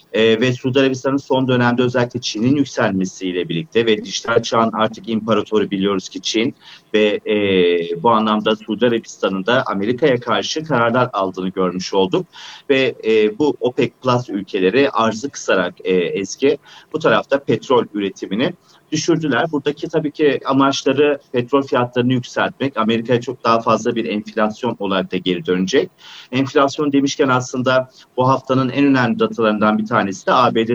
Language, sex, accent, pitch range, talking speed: Turkish, male, native, 105-135 Hz, 135 wpm